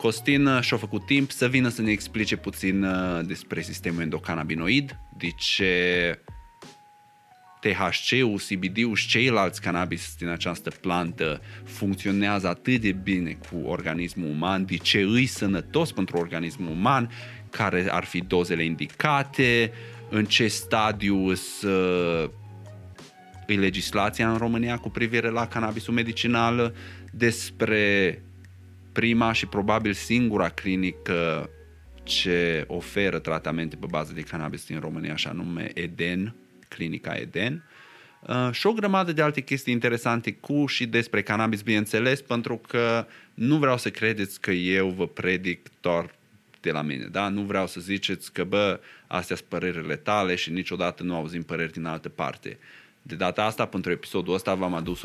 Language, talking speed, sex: Romanian, 135 wpm, male